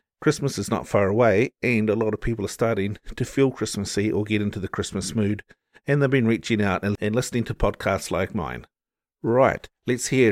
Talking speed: 205 wpm